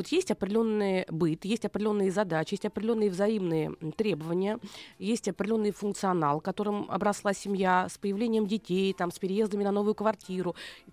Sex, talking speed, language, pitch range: female, 150 wpm, Russian, 200-245 Hz